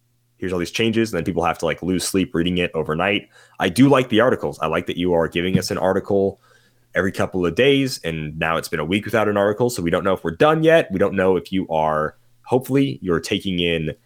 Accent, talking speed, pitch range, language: American, 255 wpm, 90-120 Hz, English